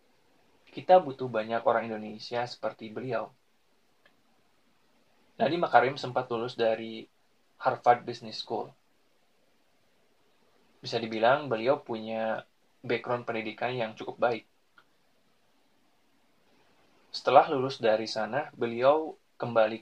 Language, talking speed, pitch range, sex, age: Indonesian, 90 wpm, 110-125 Hz, male, 20-39